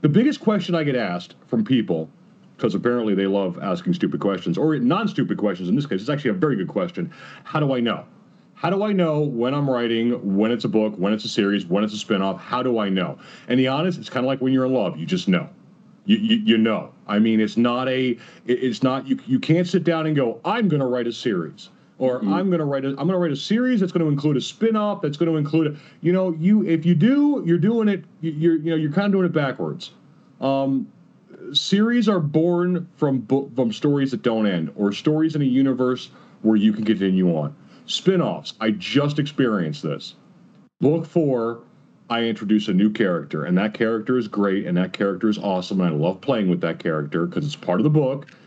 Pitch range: 115-175 Hz